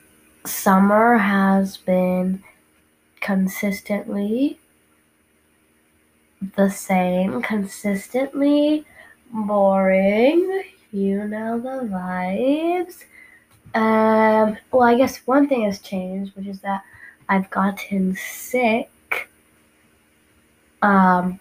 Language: English